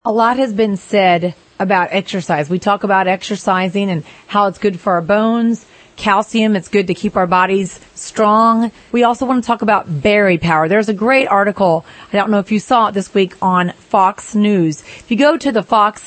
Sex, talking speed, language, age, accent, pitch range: female, 210 wpm, English, 40-59, American, 190-225 Hz